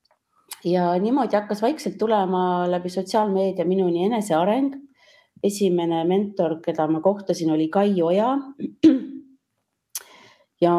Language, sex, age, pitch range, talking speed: English, female, 30-49, 160-200 Hz, 100 wpm